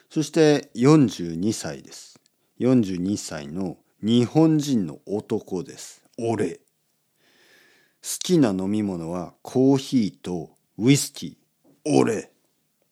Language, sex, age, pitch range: Japanese, male, 40-59, 105-160 Hz